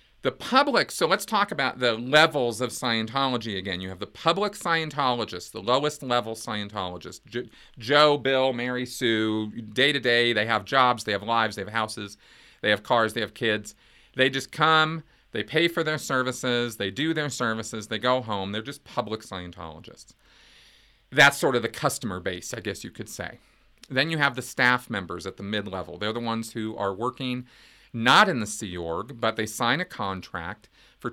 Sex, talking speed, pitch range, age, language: male, 185 wpm, 105-130 Hz, 40-59, English